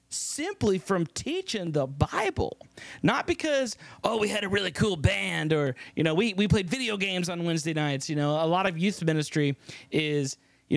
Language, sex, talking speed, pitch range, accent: English, male, 190 wpm, 155-205 Hz, American